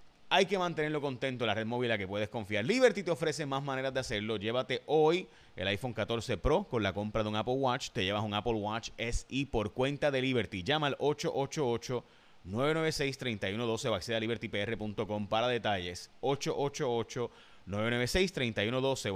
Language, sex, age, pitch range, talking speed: Spanish, male, 30-49, 110-140 Hz, 165 wpm